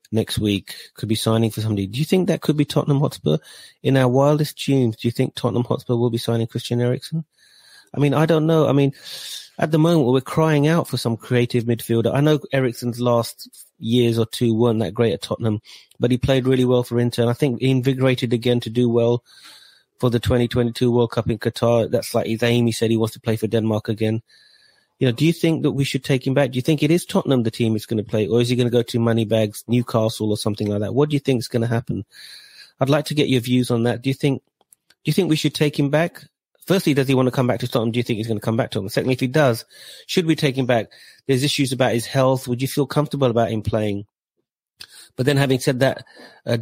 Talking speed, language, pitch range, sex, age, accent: 260 wpm, English, 115-140 Hz, male, 30-49, British